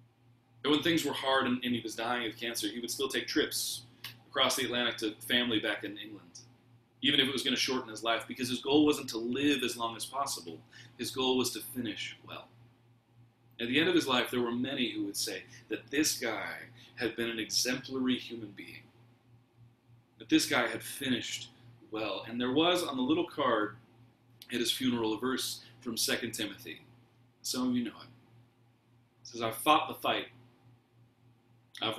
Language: English